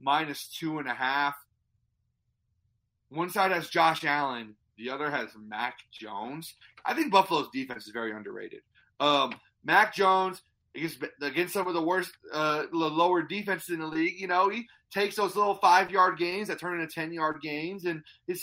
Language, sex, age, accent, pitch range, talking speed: English, male, 30-49, American, 125-185 Hz, 165 wpm